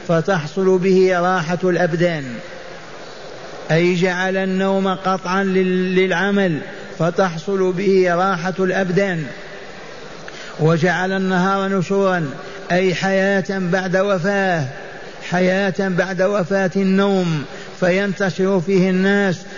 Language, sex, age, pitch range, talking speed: Arabic, male, 50-69, 180-195 Hz, 85 wpm